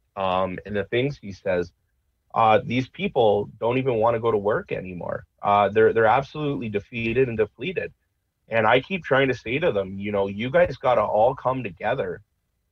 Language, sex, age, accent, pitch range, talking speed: English, male, 30-49, American, 100-125 Hz, 195 wpm